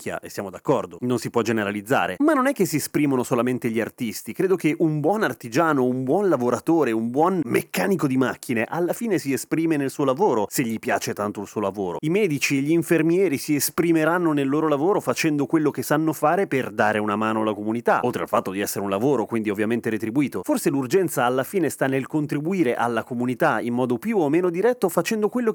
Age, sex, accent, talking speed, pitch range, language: 30-49, male, native, 215 wpm, 120-170 Hz, Italian